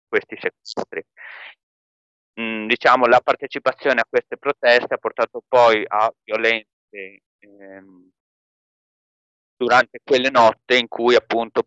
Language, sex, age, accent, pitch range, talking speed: Italian, male, 40-59, native, 105-125 Hz, 110 wpm